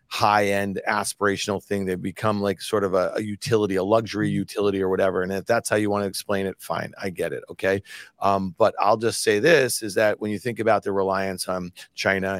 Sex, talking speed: male, 225 wpm